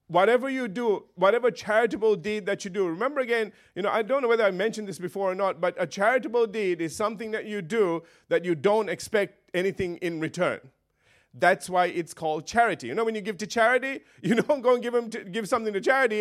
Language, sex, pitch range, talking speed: English, male, 190-240 Hz, 220 wpm